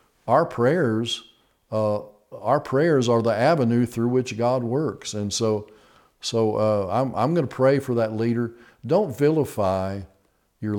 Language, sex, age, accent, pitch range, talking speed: English, male, 50-69, American, 105-125 Hz, 150 wpm